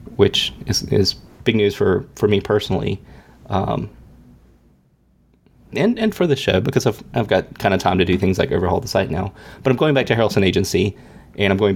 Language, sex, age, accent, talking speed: English, male, 30-49, American, 205 wpm